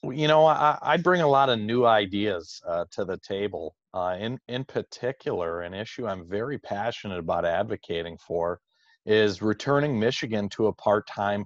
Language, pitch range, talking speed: English, 105-150 Hz, 170 wpm